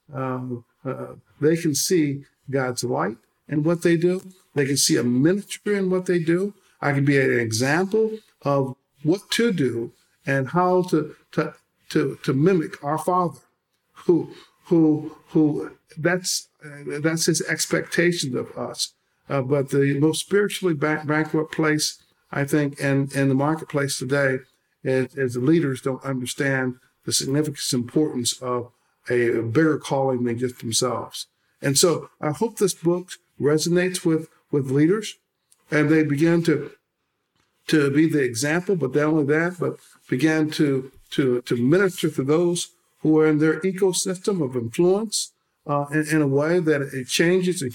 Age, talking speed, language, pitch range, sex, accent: 50-69, 155 wpm, English, 135-175 Hz, male, American